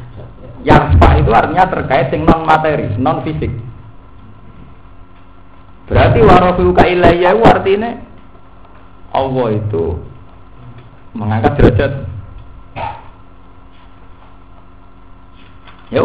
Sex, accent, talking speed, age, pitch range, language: male, native, 55 wpm, 50-69, 90-115 Hz, Indonesian